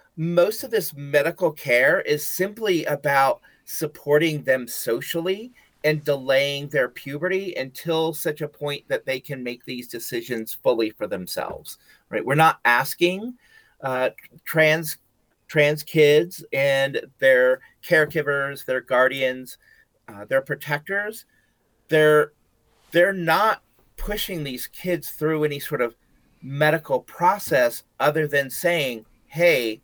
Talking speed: 120 wpm